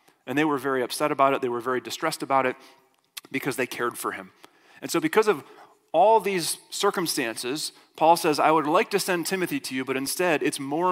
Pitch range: 130-165 Hz